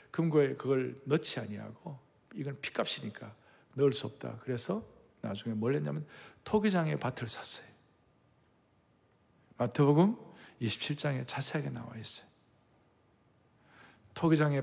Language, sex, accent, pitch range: Korean, male, native, 120-155 Hz